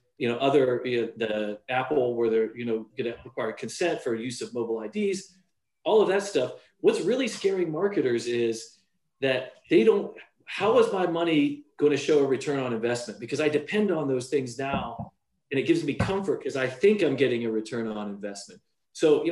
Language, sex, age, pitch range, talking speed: English, male, 40-59, 120-180 Hz, 200 wpm